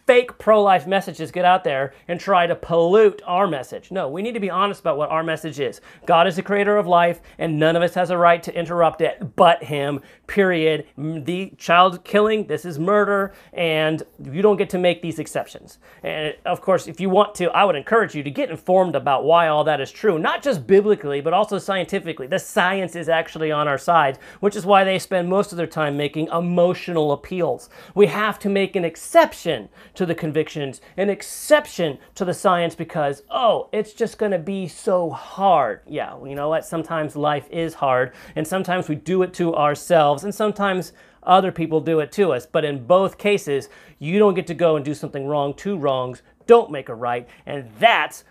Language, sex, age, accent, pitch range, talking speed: English, male, 40-59, American, 150-195 Hz, 210 wpm